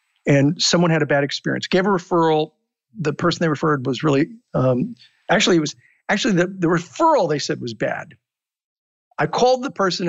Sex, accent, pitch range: male, American, 150-195 Hz